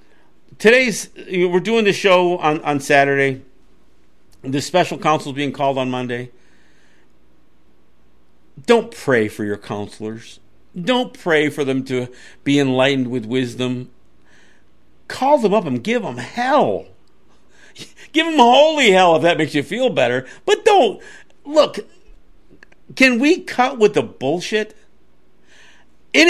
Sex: male